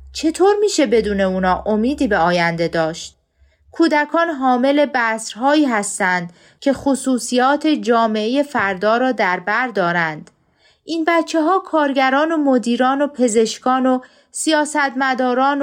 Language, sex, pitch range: Persian, female, 195-275 Hz